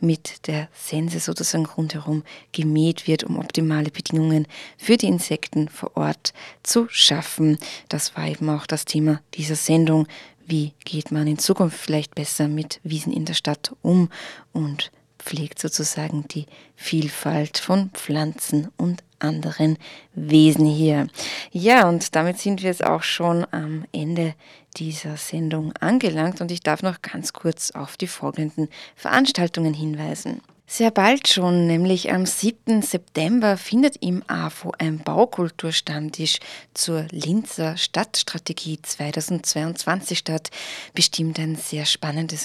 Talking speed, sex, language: 135 wpm, female, German